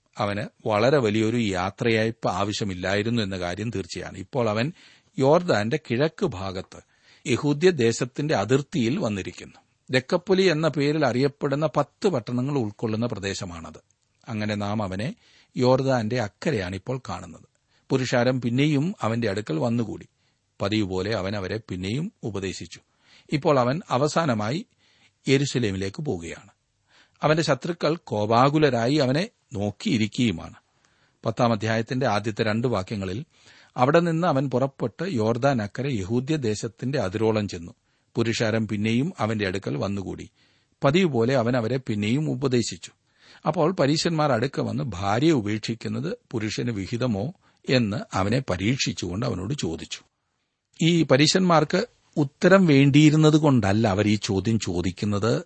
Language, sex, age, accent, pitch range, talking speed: Malayalam, male, 40-59, native, 105-145 Hz, 105 wpm